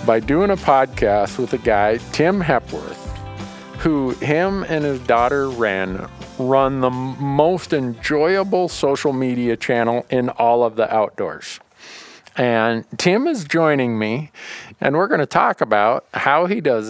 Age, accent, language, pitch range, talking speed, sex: 50-69, American, English, 105-135 Hz, 145 wpm, male